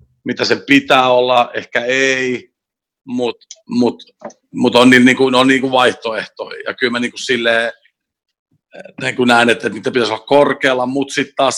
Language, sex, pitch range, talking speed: Finnish, male, 115-135 Hz, 150 wpm